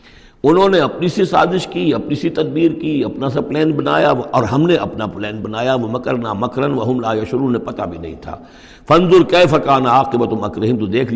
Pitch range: 120-155 Hz